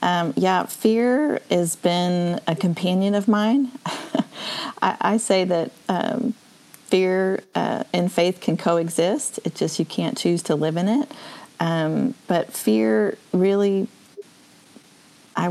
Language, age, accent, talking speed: English, 40-59, American, 130 wpm